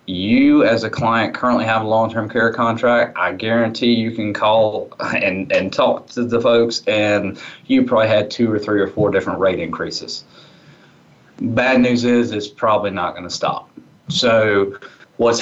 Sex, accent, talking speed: male, American, 170 wpm